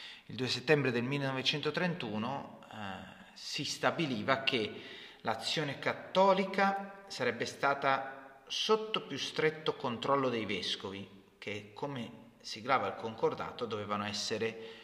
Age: 30-49